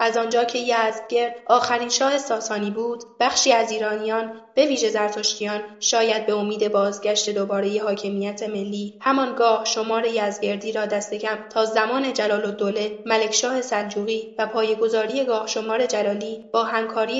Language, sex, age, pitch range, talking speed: Persian, female, 10-29, 215-245 Hz, 145 wpm